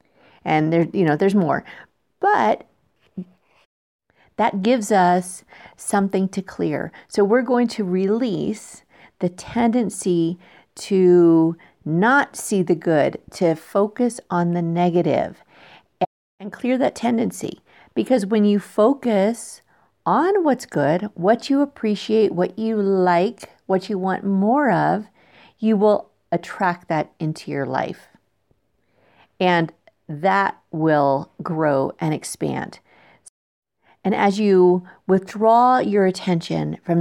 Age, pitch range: 50-69, 170-215 Hz